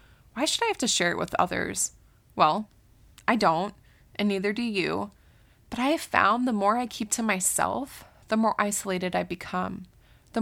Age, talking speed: 20-39, 185 wpm